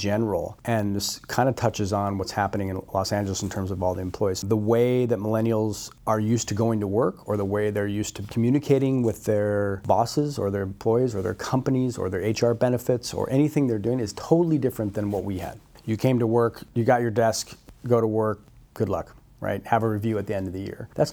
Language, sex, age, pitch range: English, male, 30-49, 105-120 Hz